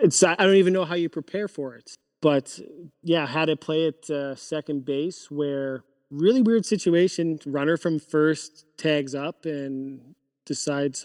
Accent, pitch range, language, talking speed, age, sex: American, 140-160 Hz, English, 165 wpm, 20-39, male